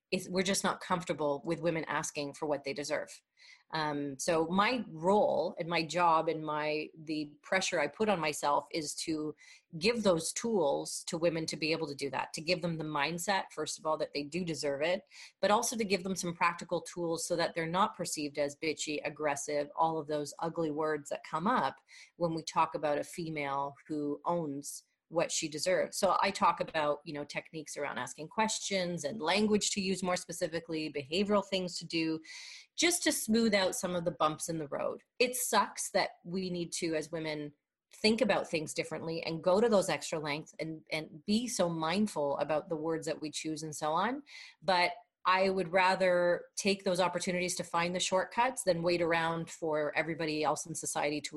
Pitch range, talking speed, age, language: 155-185 Hz, 200 wpm, 30-49, English